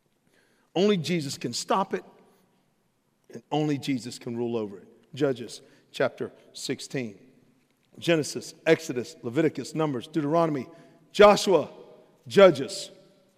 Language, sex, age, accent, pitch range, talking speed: English, male, 50-69, American, 130-165 Hz, 100 wpm